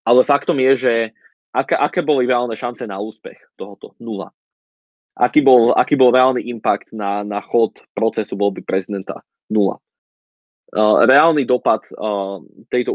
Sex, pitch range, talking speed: male, 105-125 Hz, 130 wpm